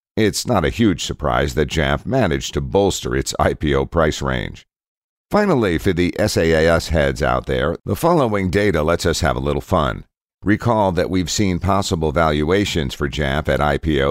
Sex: male